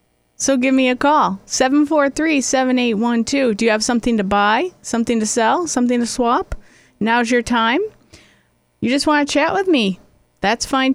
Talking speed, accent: 165 wpm, American